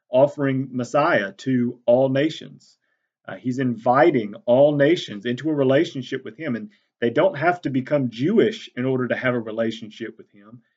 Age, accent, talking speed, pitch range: 40-59, American, 165 wpm, 120-145 Hz